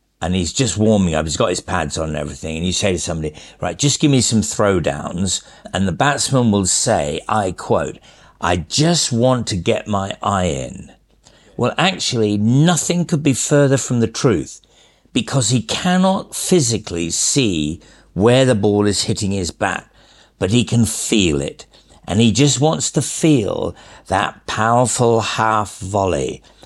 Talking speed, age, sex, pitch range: 165 wpm, 50-69, male, 90-125 Hz